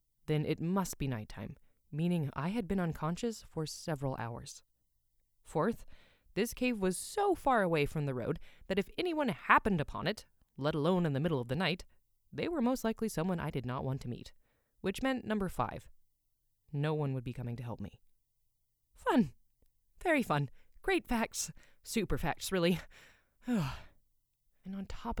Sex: female